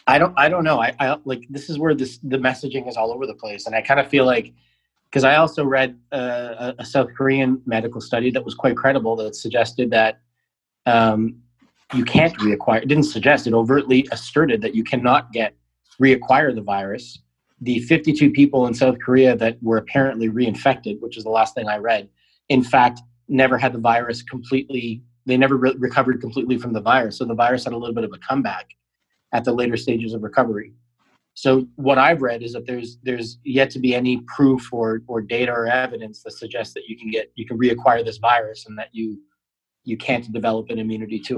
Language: English